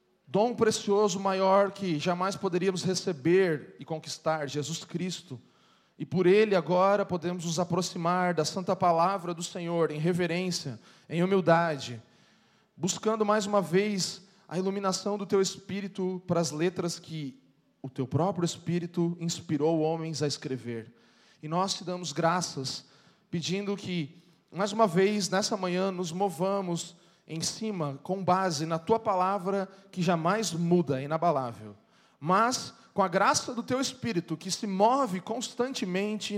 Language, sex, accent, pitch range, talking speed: Portuguese, male, Brazilian, 155-195 Hz, 140 wpm